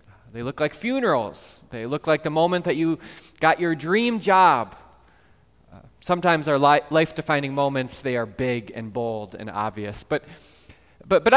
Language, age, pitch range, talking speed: English, 20-39, 125-165 Hz, 160 wpm